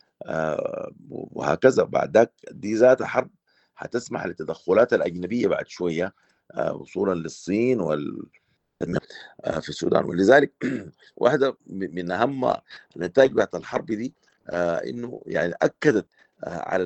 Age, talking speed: 50-69, 100 wpm